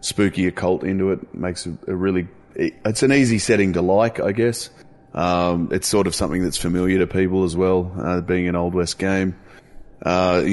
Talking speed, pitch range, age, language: 190 wpm, 85-95 Hz, 20-39, English